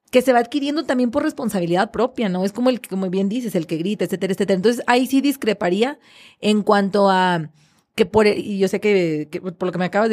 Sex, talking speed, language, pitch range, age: female, 245 wpm, Spanish, 185-235 Hz, 30-49